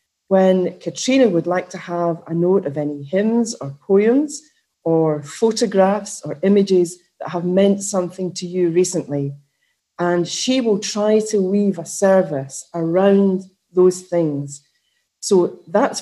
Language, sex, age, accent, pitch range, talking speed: English, female, 40-59, British, 160-205 Hz, 140 wpm